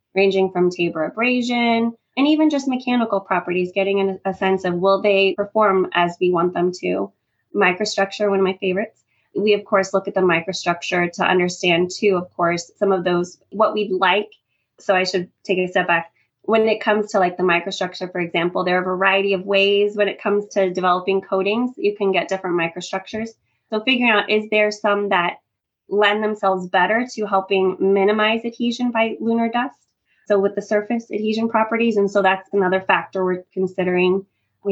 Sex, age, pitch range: female, 20-39, 180-205 Hz